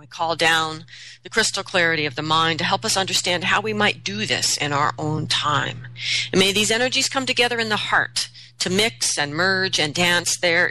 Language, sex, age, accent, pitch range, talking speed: English, female, 40-59, American, 130-190 Hz, 205 wpm